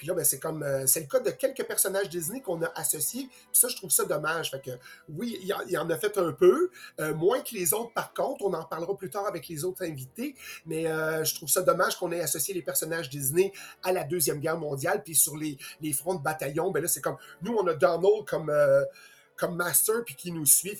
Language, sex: French, male